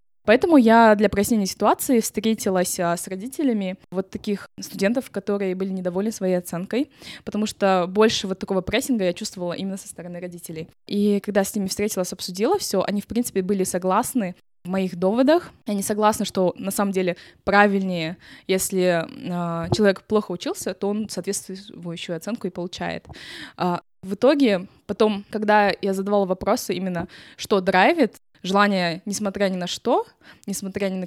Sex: female